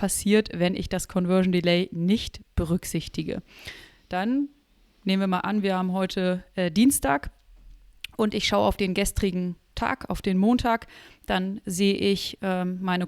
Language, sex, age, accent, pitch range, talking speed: German, female, 30-49, German, 180-215 Hz, 145 wpm